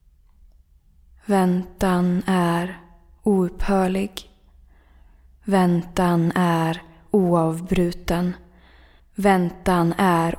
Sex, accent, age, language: female, native, 20-39, Swedish